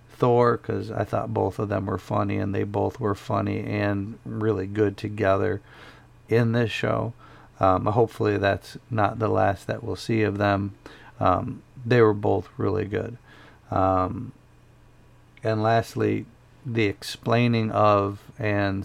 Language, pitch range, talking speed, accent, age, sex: English, 100-115 Hz, 145 wpm, American, 50-69, male